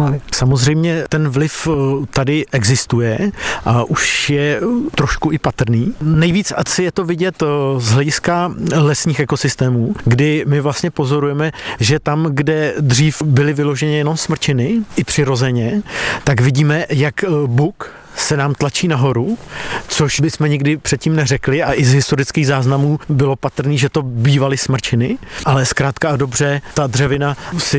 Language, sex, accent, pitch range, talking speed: Czech, male, native, 135-155 Hz, 145 wpm